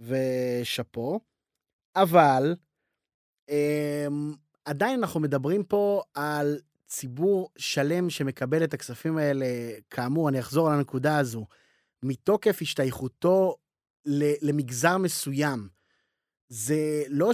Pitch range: 145-190 Hz